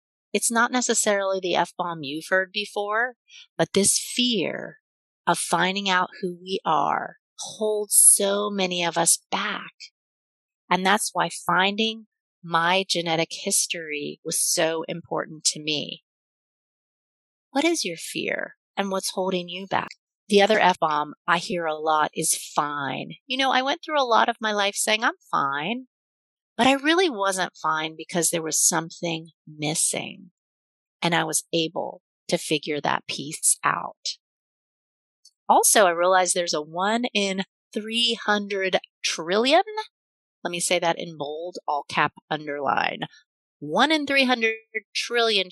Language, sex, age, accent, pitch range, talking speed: English, female, 40-59, American, 165-220 Hz, 140 wpm